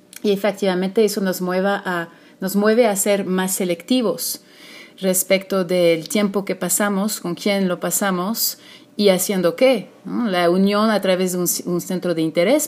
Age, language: 30-49, Spanish